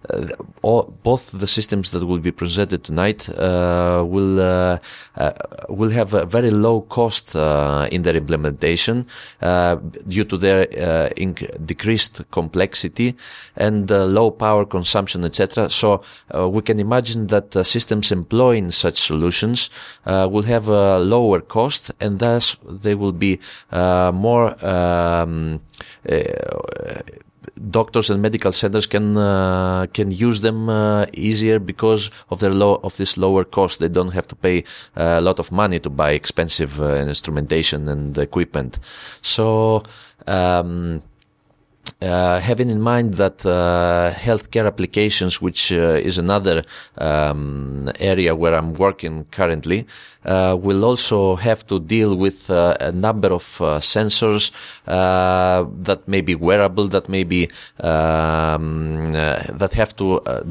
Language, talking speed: English, 145 wpm